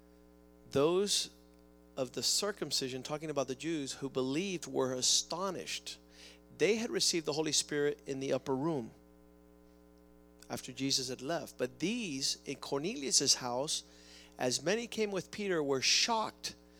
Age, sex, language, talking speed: 50-69, male, English, 135 wpm